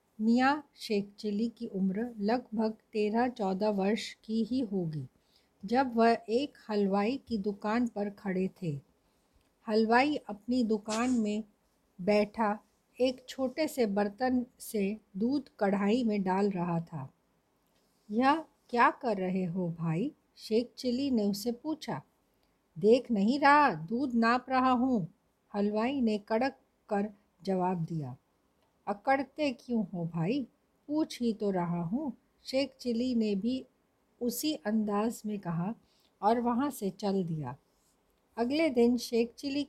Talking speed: 130 wpm